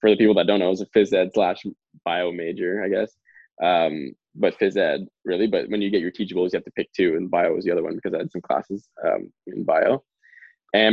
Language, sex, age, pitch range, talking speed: English, male, 20-39, 100-115 Hz, 260 wpm